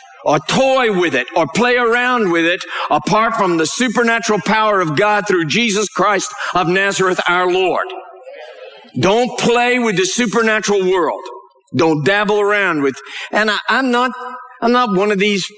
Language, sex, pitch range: English, male, 170-245 Hz